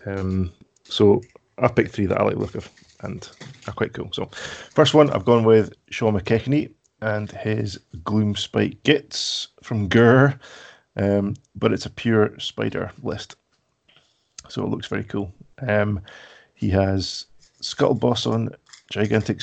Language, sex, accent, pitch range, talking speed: English, male, British, 100-115 Hz, 150 wpm